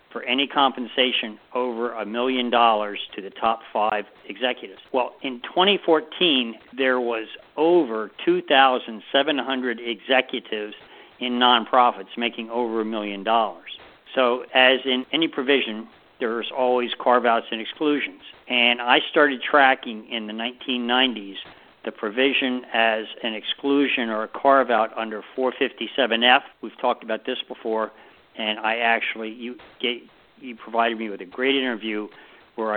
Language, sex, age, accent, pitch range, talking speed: English, male, 50-69, American, 110-130 Hz, 130 wpm